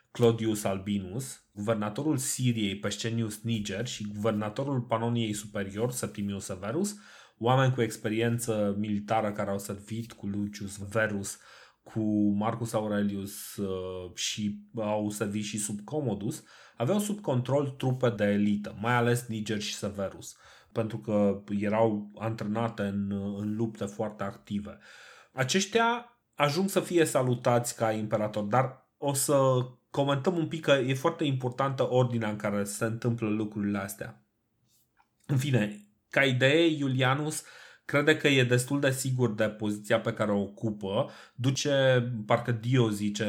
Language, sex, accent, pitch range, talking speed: Romanian, male, native, 105-130 Hz, 135 wpm